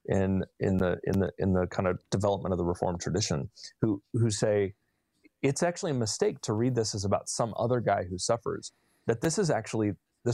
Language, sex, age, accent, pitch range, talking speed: English, male, 30-49, American, 100-135 Hz, 210 wpm